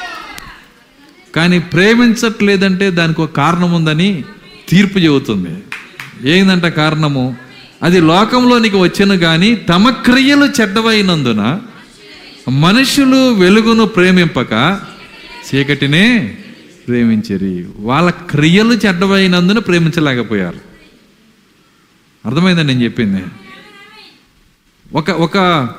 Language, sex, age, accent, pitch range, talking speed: Telugu, male, 50-69, native, 160-235 Hz, 70 wpm